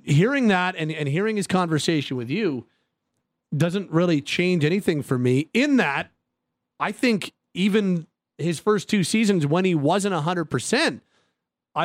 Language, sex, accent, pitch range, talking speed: English, male, American, 145-185 Hz, 140 wpm